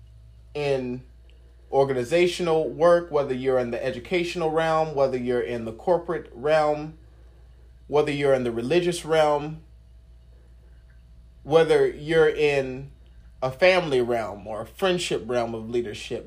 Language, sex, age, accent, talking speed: English, male, 30-49, American, 120 wpm